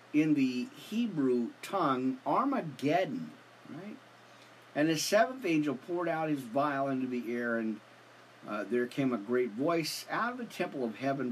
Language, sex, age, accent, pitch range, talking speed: English, male, 50-69, American, 125-170 Hz, 160 wpm